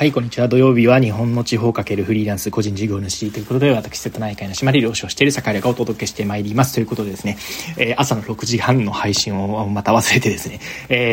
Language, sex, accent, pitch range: Japanese, male, native, 105-135 Hz